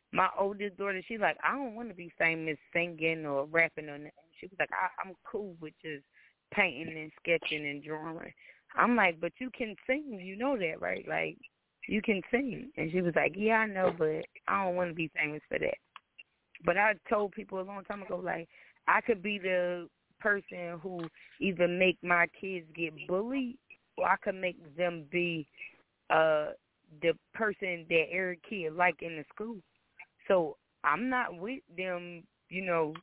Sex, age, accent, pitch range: female, 20-39, American, 170-215 Hz